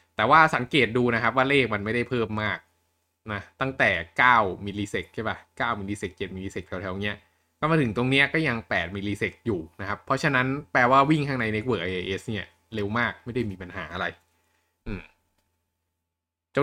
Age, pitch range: 20-39, 85-120 Hz